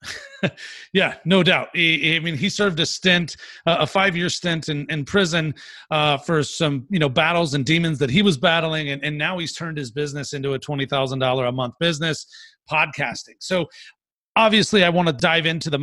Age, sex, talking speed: 30-49, male, 205 wpm